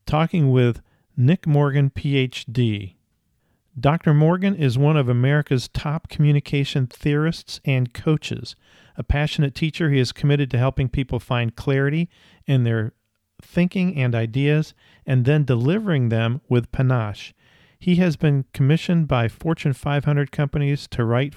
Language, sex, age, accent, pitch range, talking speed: English, male, 40-59, American, 120-150 Hz, 135 wpm